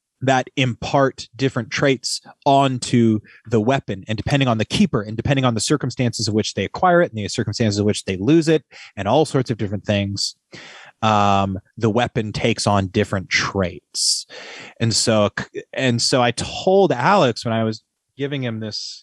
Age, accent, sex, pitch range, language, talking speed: 30-49, American, male, 95-120 Hz, English, 175 wpm